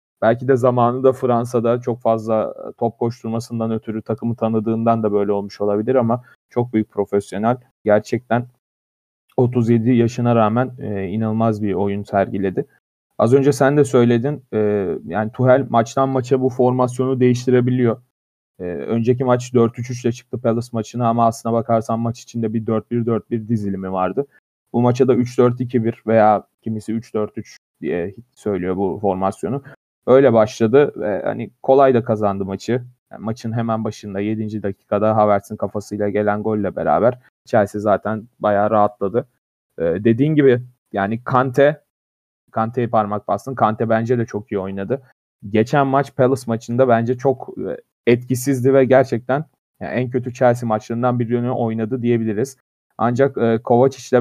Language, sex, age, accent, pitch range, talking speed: Turkish, male, 30-49, native, 110-125 Hz, 145 wpm